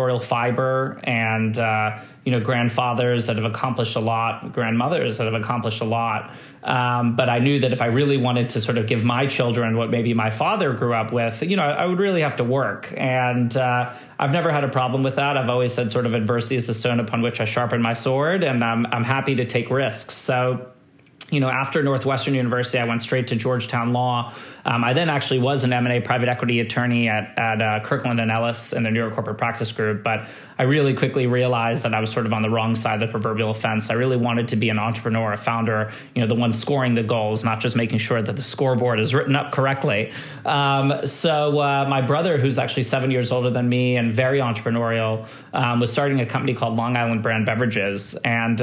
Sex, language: male, English